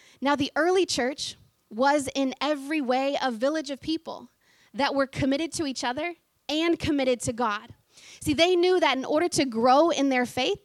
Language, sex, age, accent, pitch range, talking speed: English, female, 20-39, American, 255-315 Hz, 185 wpm